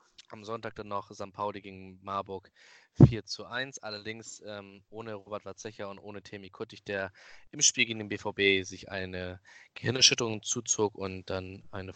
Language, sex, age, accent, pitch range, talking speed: German, male, 20-39, German, 95-120 Hz, 165 wpm